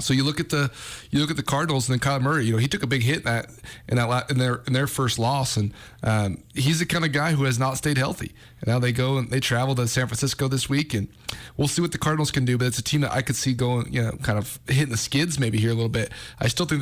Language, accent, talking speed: English, American, 310 wpm